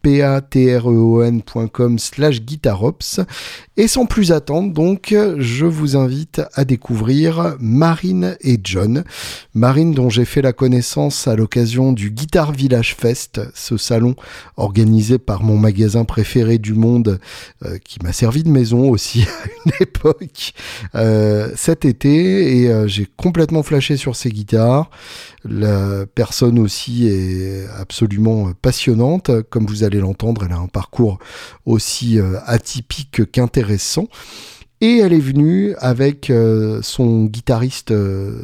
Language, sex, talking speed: French, male, 125 wpm